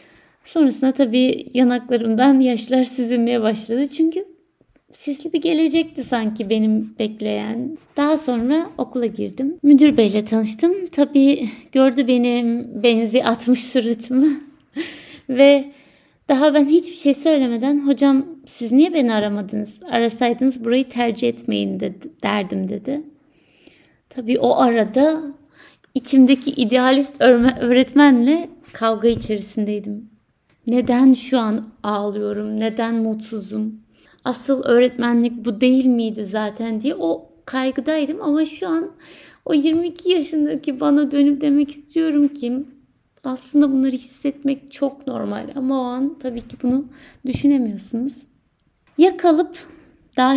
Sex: female